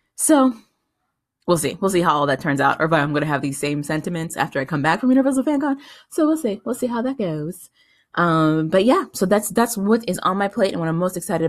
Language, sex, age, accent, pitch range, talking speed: English, female, 20-39, American, 165-230 Hz, 260 wpm